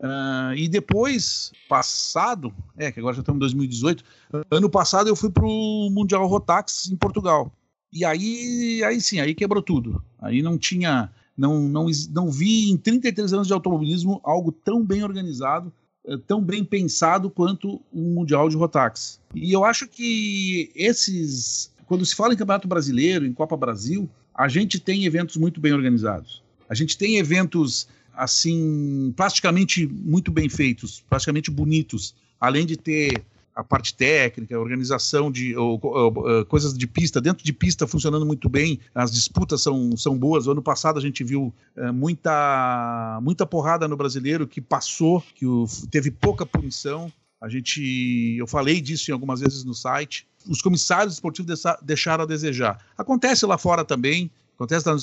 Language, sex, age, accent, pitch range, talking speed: Portuguese, male, 50-69, Brazilian, 130-180 Hz, 160 wpm